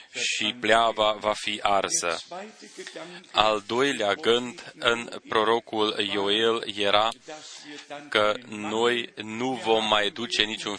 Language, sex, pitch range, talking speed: Romanian, male, 105-125 Hz, 105 wpm